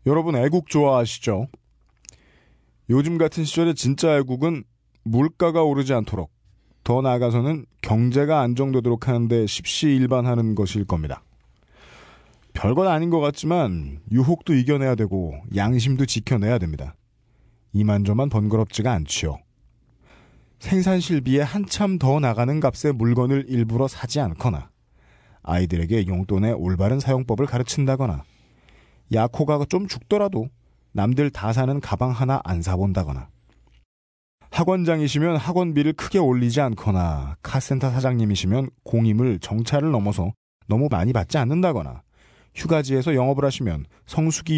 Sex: male